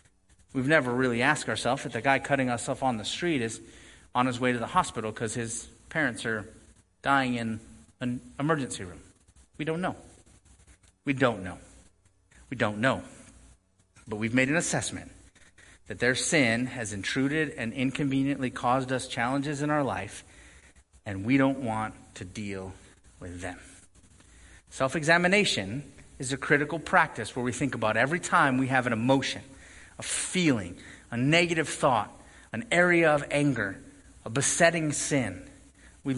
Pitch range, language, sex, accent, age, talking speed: 100-145 Hz, English, male, American, 30-49, 155 wpm